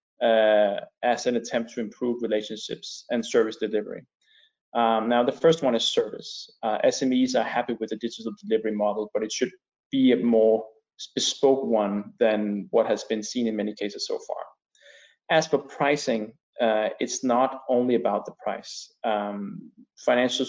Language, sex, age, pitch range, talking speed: English, male, 20-39, 105-135 Hz, 165 wpm